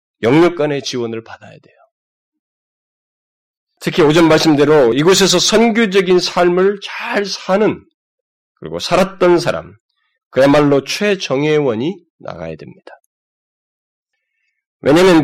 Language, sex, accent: Korean, male, native